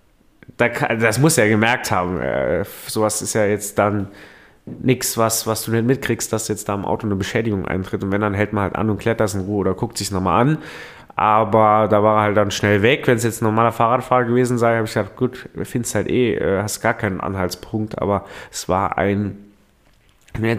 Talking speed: 215 wpm